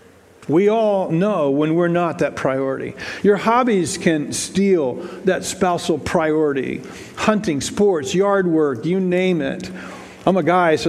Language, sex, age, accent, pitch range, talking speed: English, male, 50-69, American, 160-210 Hz, 145 wpm